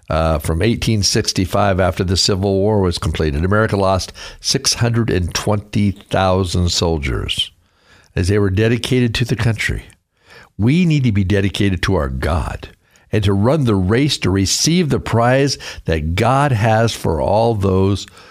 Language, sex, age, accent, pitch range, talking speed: English, male, 60-79, American, 95-125 Hz, 140 wpm